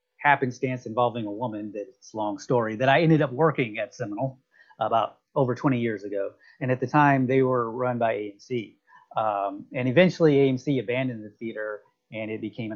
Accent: American